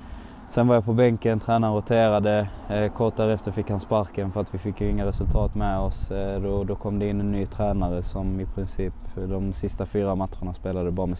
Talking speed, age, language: 210 wpm, 20-39, Danish